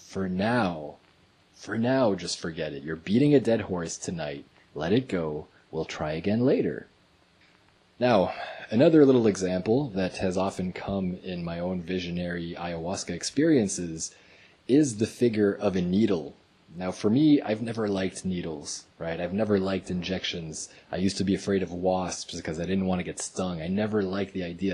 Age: 20-39